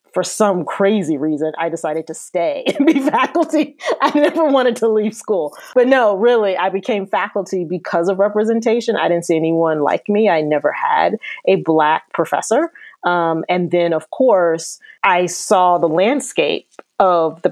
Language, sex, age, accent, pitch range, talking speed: English, female, 30-49, American, 170-270 Hz, 170 wpm